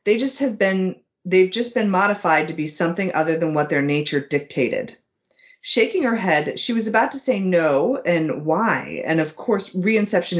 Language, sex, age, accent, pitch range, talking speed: English, female, 30-49, American, 160-220 Hz, 180 wpm